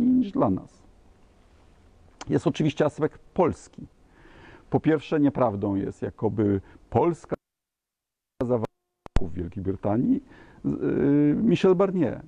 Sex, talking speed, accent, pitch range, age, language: male, 95 wpm, native, 100-140 Hz, 50-69, Polish